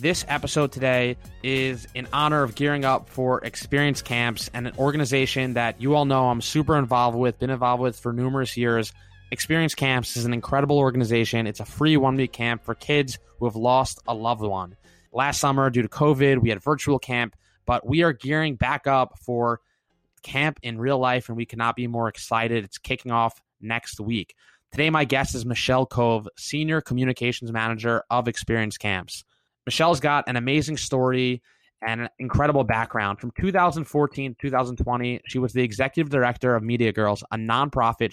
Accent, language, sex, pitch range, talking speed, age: American, English, male, 115-135 Hz, 180 wpm, 20-39